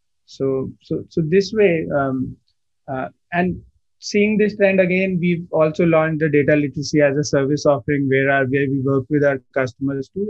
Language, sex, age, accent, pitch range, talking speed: English, male, 30-49, Indian, 130-150 Hz, 180 wpm